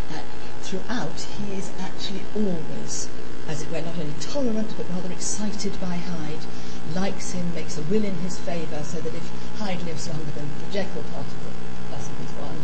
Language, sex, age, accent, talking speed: English, female, 50-69, British, 175 wpm